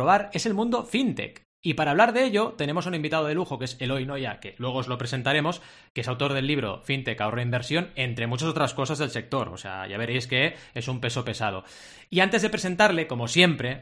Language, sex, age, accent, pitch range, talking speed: Spanish, male, 20-39, Spanish, 115-155 Hz, 225 wpm